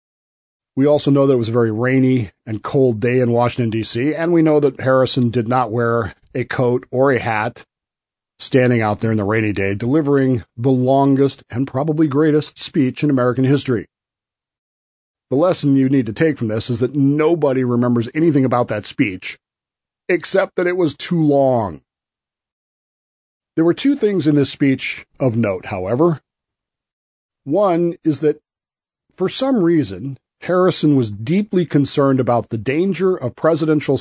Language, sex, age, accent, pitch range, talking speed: English, male, 40-59, American, 120-155 Hz, 160 wpm